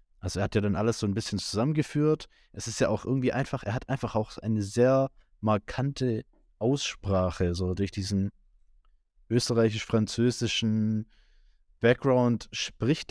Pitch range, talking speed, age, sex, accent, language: 100-120 Hz, 135 wpm, 20-39, male, German, German